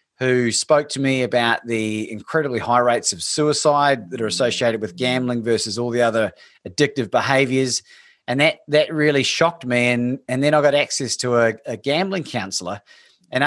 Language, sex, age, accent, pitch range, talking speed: English, male, 30-49, Australian, 120-145 Hz, 180 wpm